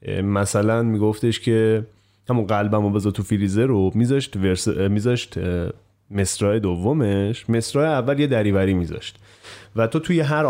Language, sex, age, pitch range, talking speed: Persian, male, 30-49, 100-125 Hz, 135 wpm